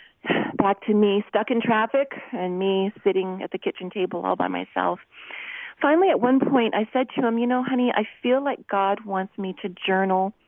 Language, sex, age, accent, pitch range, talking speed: English, female, 40-59, American, 185-235 Hz, 200 wpm